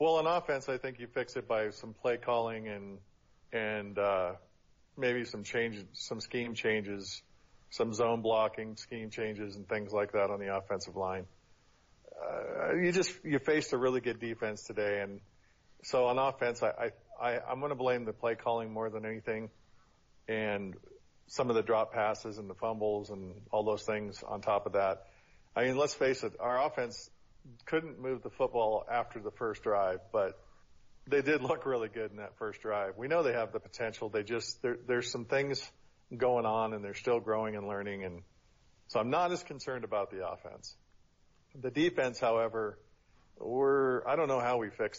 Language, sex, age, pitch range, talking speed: English, male, 40-59, 100-125 Hz, 190 wpm